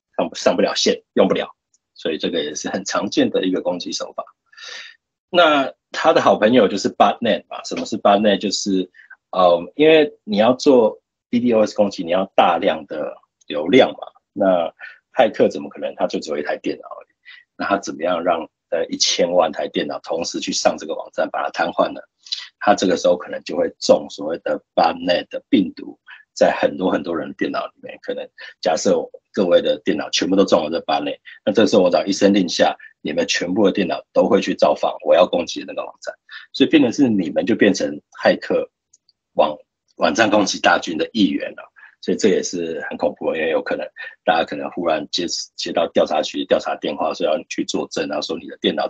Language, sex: Chinese, male